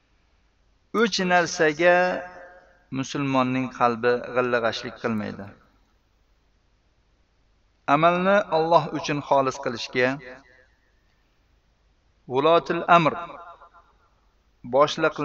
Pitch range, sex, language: 120-165 Hz, male, Russian